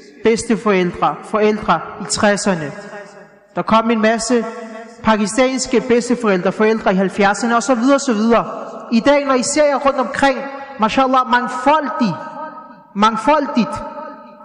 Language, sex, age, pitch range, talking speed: Danish, male, 30-49, 220-270 Hz, 125 wpm